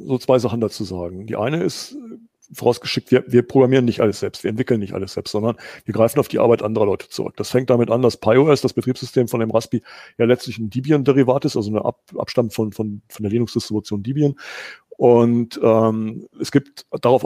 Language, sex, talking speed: German, male, 210 wpm